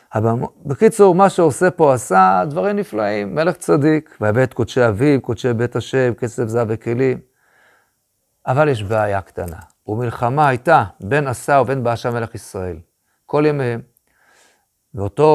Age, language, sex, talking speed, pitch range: 50-69, Hebrew, male, 135 wpm, 115-150 Hz